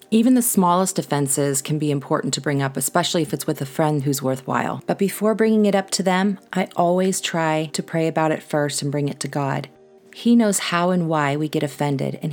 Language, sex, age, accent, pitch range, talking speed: English, female, 30-49, American, 145-190 Hz, 230 wpm